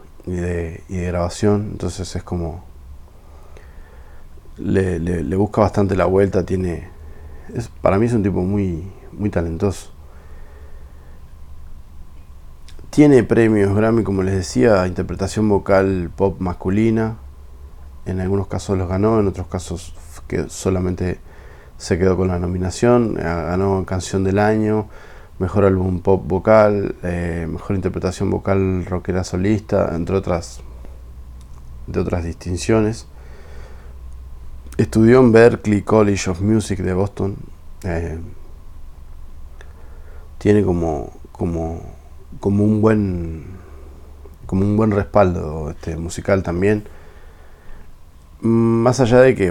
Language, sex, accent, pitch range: Spanish, male, Argentinian, 80-100 Hz